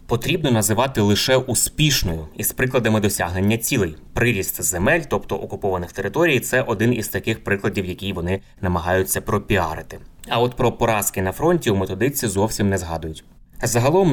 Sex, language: male, Ukrainian